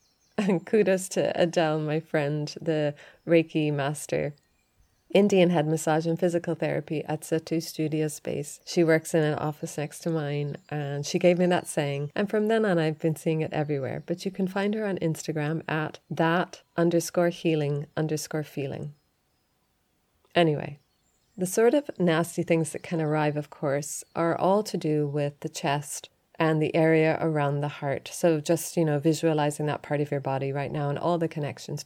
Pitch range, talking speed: 145-170 Hz, 180 wpm